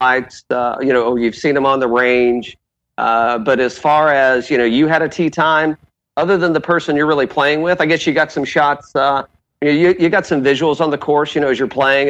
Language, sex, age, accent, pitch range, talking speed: English, male, 40-59, American, 125-150 Hz, 245 wpm